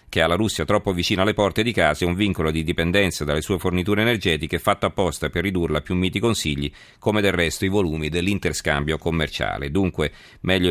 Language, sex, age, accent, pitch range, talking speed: Italian, male, 40-59, native, 85-100 Hz, 200 wpm